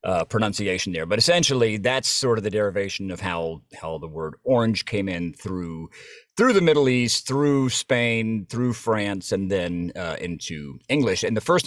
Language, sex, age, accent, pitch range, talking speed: English, male, 40-59, American, 105-135 Hz, 180 wpm